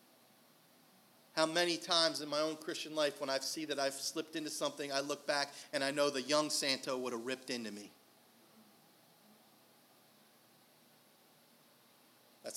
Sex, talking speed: male, 150 wpm